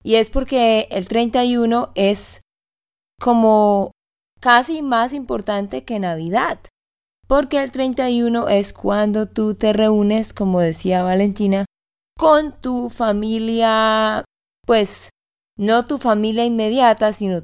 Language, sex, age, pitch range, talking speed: Spanish, female, 20-39, 195-245 Hz, 110 wpm